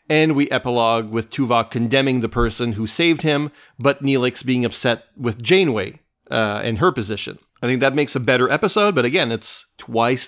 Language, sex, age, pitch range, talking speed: English, male, 40-59, 120-150 Hz, 185 wpm